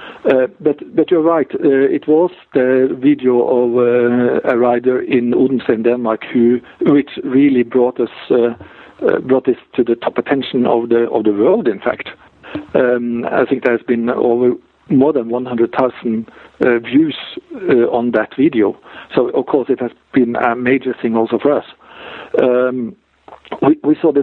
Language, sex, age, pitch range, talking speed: English, male, 50-69, 115-145 Hz, 180 wpm